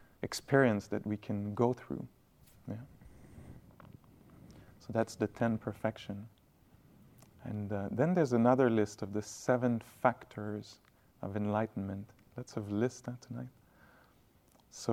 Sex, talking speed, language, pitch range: male, 120 wpm, English, 105-125 Hz